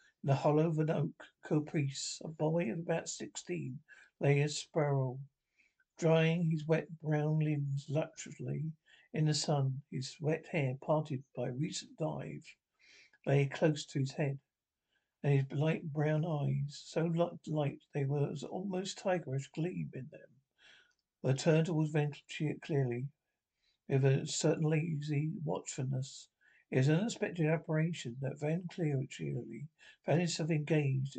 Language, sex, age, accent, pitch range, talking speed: English, male, 60-79, British, 140-165 Hz, 140 wpm